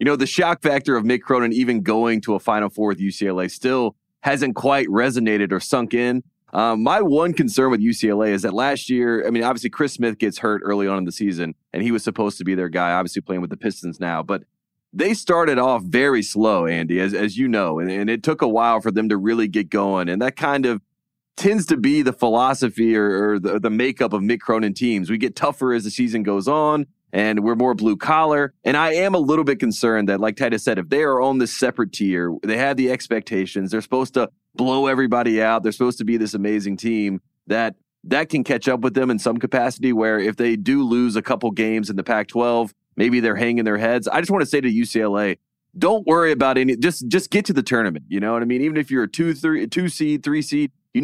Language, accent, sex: English, American, male